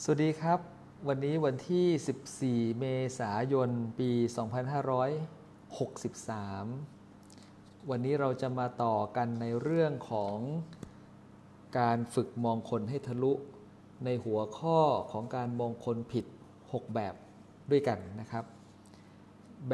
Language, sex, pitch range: Thai, male, 110-140 Hz